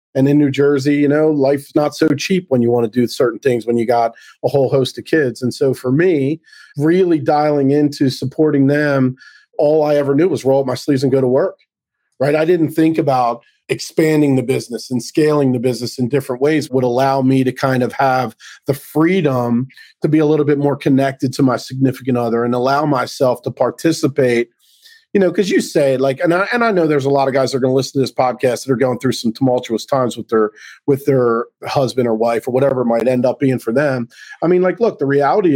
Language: English